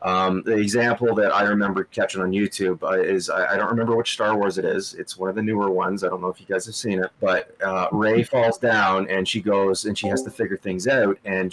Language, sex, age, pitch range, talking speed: English, male, 30-49, 95-115 Hz, 265 wpm